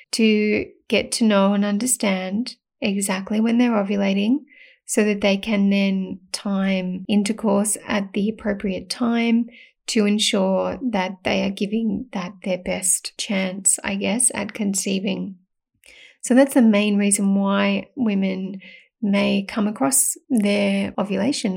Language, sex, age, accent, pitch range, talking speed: English, female, 30-49, Australian, 195-230 Hz, 130 wpm